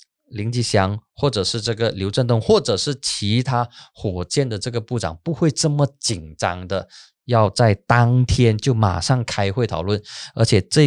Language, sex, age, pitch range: Chinese, male, 20-39, 100-140 Hz